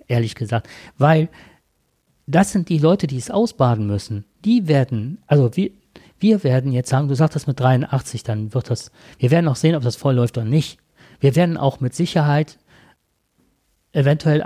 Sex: male